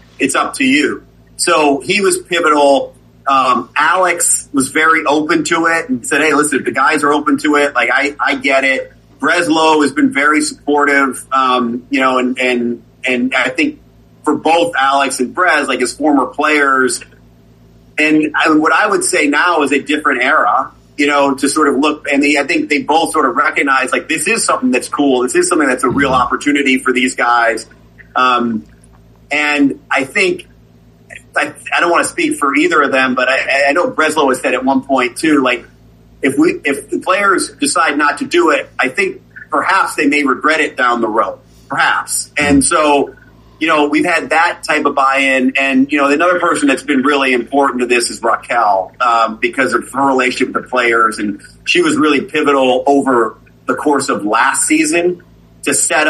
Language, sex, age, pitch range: English, male, 30-49, 130-160 Hz